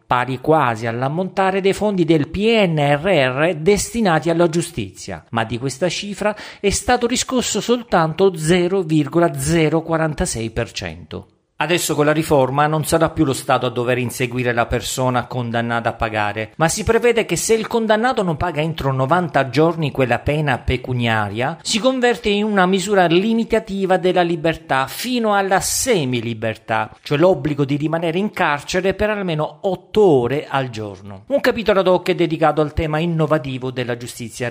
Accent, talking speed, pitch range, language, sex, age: native, 150 wpm, 125-190 Hz, Italian, male, 50-69